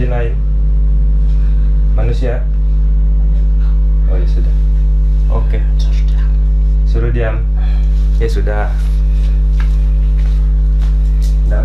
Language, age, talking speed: Indonesian, 20-39, 65 wpm